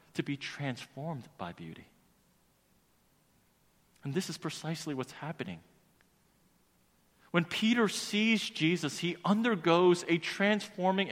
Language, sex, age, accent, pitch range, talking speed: English, male, 40-59, American, 150-190 Hz, 105 wpm